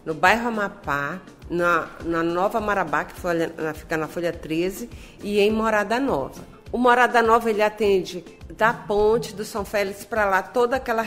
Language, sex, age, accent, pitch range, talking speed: Portuguese, female, 50-69, Brazilian, 185-215 Hz, 170 wpm